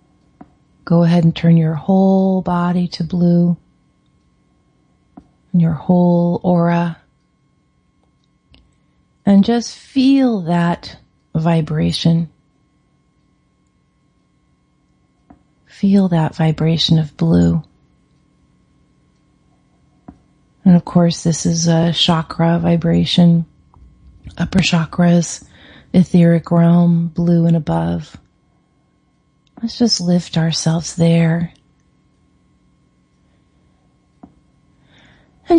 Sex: female